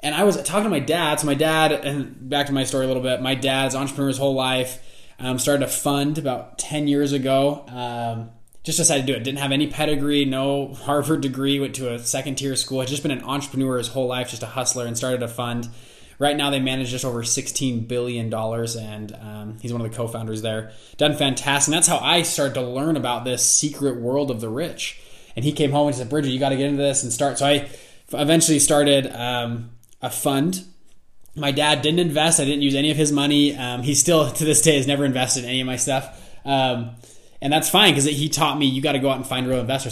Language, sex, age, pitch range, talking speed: English, male, 20-39, 125-150 Hz, 245 wpm